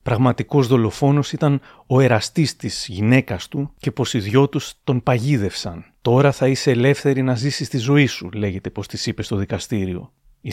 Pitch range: 115-135 Hz